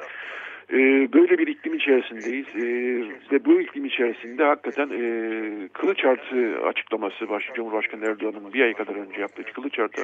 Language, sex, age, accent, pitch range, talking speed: Turkish, male, 50-69, native, 115-140 Hz, 125 wpm